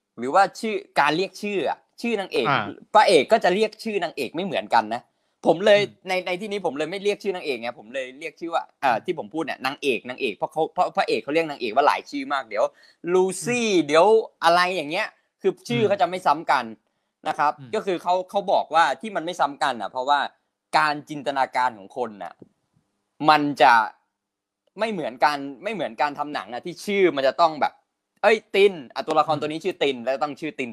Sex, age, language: male, 20-39, Thai